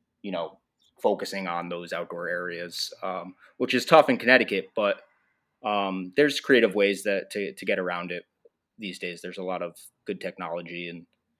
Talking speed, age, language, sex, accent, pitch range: 175 wpm, 20-39, English, male, American, 95-125 Hz